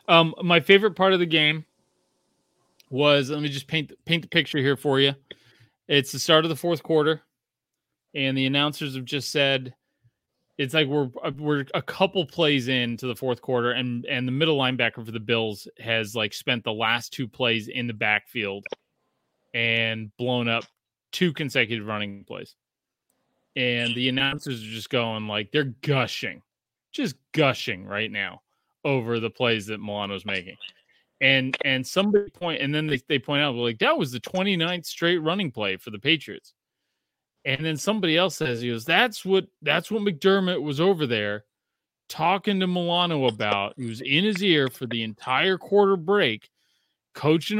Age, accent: 20-39, American